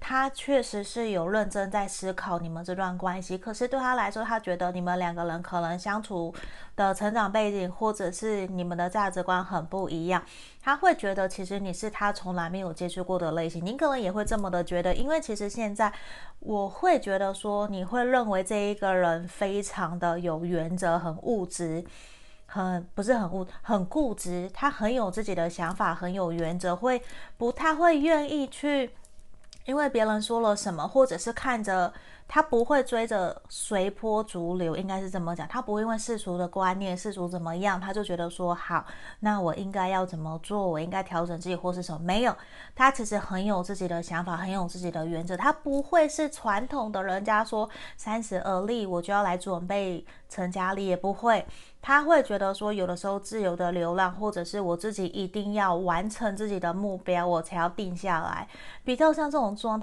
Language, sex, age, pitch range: Chinese, female, 30-49, 180-220 Hz